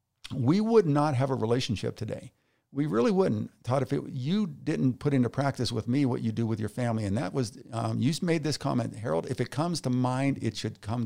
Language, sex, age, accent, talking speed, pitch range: English, male, 50-69, American, 235 wpm, 110-140 Hz